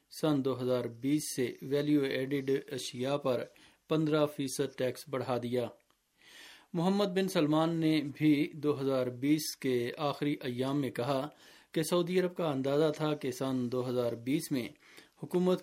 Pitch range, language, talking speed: 130-155 Hz, Urdu, 140 wpm